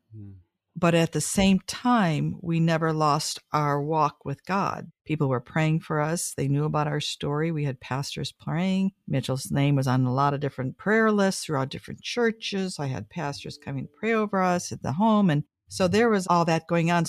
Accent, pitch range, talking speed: American, 150-175 Hz, 205 wpm